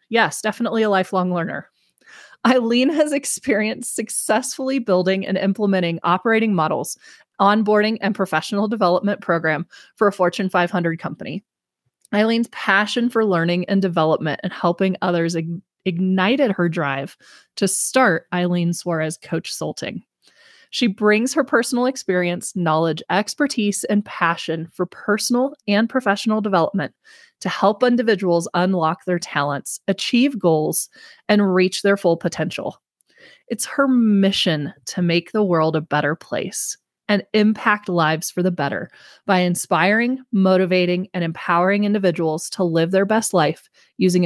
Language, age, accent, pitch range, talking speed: English, 20-39, American, 165-215 Hz, 130 wpm